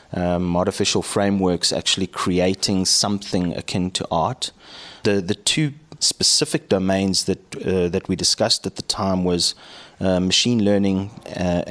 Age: 30-49